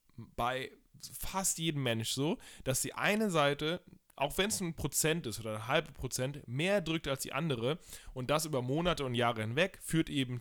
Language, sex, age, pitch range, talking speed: German, male, 10-29, 125-160 Hz, 190 wpm